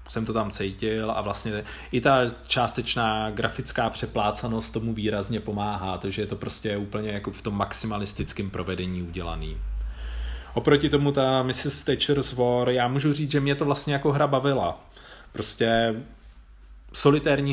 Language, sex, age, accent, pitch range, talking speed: Czech, male, 30-49, native, 100-120 Hz, 145 wpm